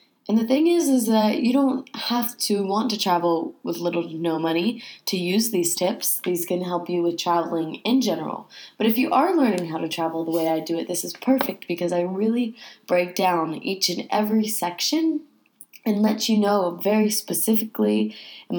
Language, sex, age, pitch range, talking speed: English, female, 20-39, 170-230 Hz, 200 wpm